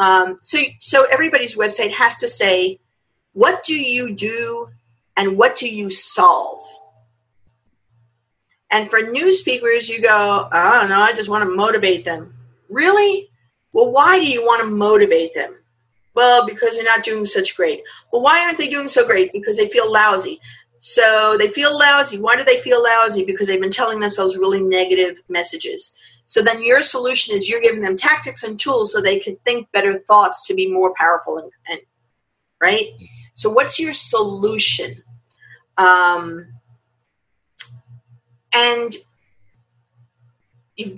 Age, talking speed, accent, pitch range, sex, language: 50-69, 160 wpm, American, 185-275 Hz, female, English